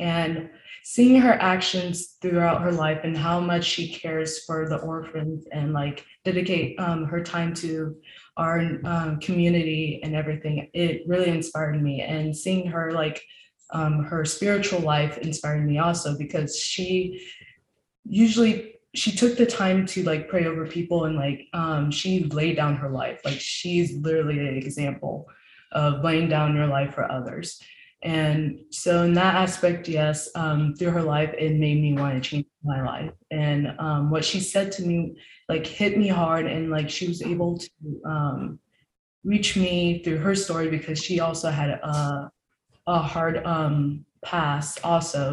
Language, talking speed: English, 165 wpm